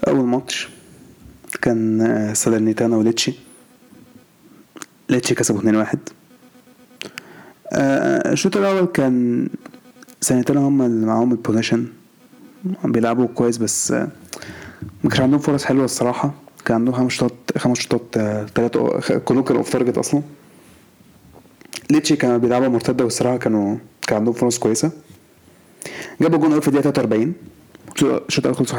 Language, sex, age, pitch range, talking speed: Arabic, male, 30-49, 120-170 Hz, 115 wpm